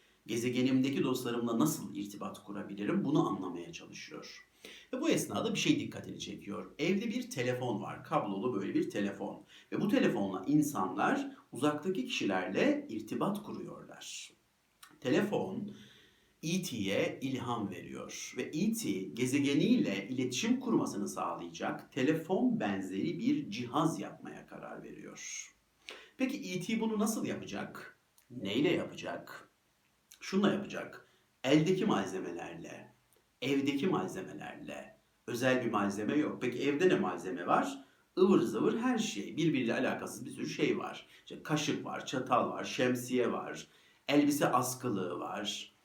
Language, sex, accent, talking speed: Turkish, male, native, 115 wpm